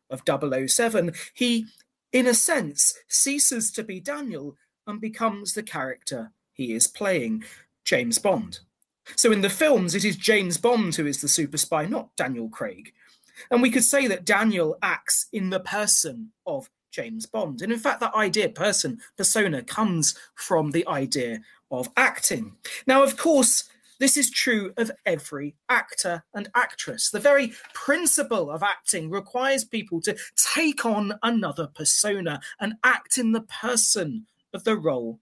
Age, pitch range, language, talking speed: 30-49, 165-235 Hz, English, 155 wpm